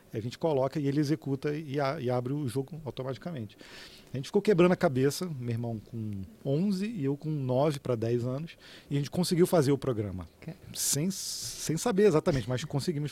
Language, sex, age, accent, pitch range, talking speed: Portuguese, male, 40-59, Brazilian, 125-160 Hz, 195 wpm